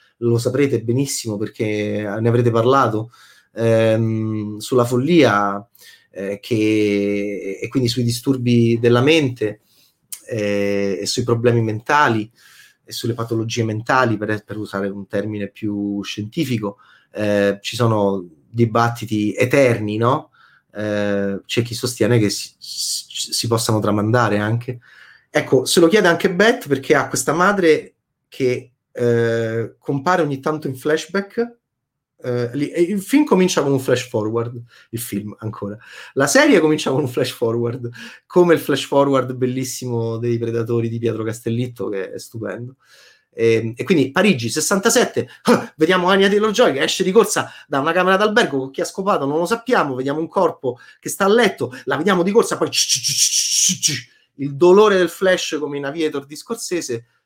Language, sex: Italian, male